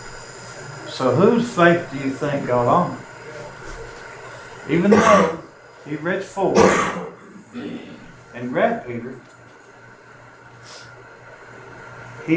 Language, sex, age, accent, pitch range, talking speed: English, male, 60-79, American, 120-150 Hz, 80 wpm